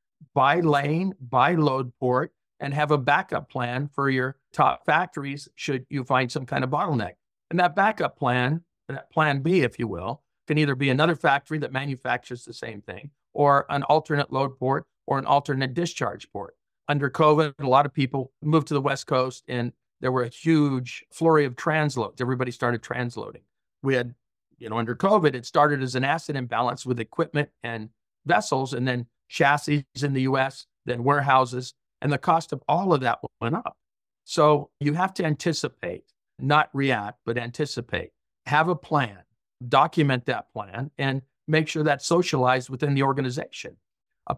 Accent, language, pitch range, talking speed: American, English, 125-150 Hz, 175 wpm